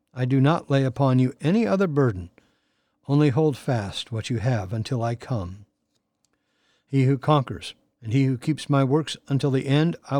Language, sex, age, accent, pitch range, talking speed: English, male, 60-79, American, 115-150 Hz, 180 wpm